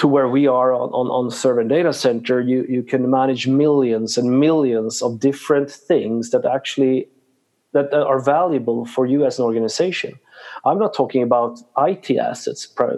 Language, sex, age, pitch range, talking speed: English, male, 30-49, 125-150 Hz, 165 wpm